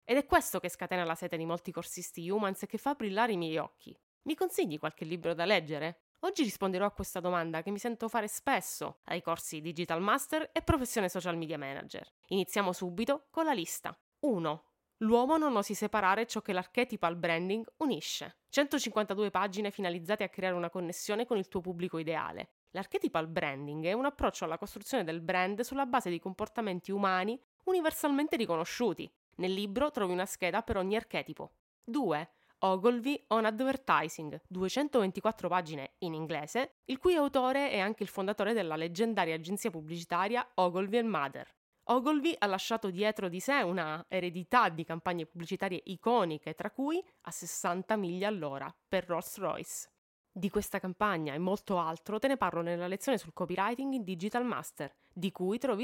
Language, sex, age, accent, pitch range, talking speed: Italian, female, 20-39, native, 175-240 Hz, 165 wpm